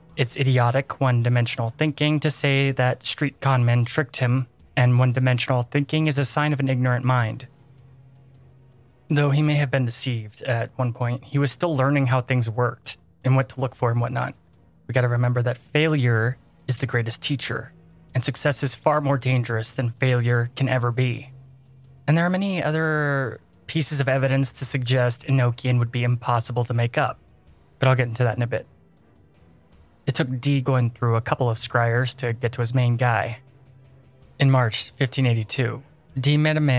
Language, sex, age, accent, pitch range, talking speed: English, male, 20-39, American, 120-135 Hz, 175 wpm